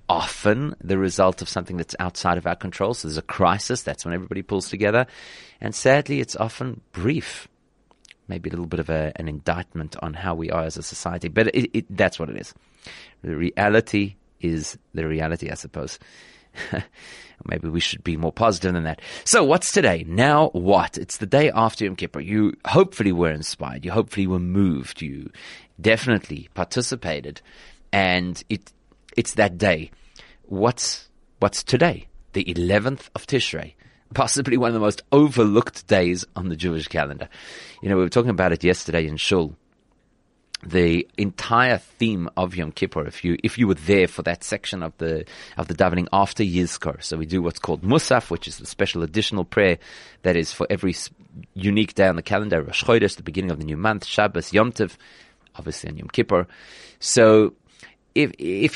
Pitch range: 85-110 Hz